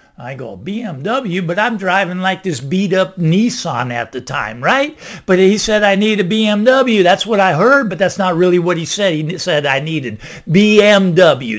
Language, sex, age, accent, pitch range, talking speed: English, male, 50-69, American, 155-205 Hz, 190 wpm